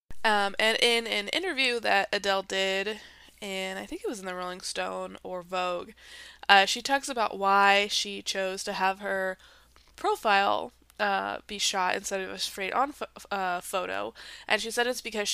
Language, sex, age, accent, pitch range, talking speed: English, female, 20-39, American, 190-220 Hz, 180 wpm